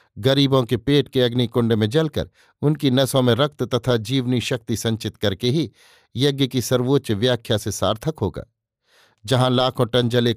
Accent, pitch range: native, 110-135 Hz